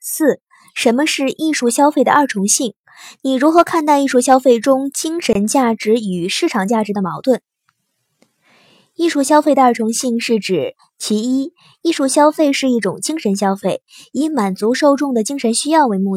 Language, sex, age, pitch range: Chinese, male, 20-39, 205-295 Hz